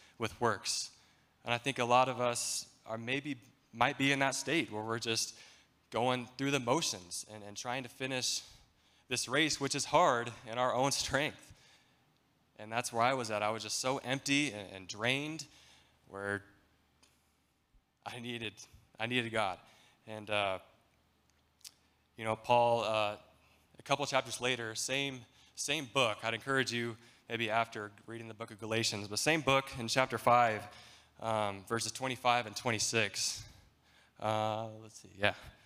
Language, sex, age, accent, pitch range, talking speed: English, male, 20-39, American, 105-125 Hz, 160 wpm